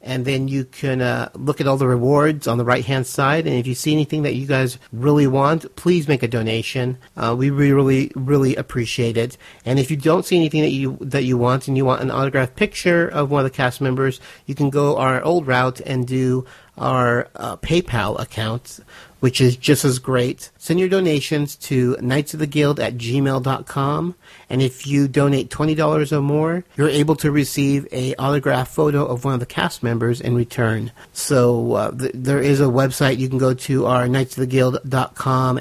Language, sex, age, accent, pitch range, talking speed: English, male, 50-69, American, 125-150 Hz, 195 wpm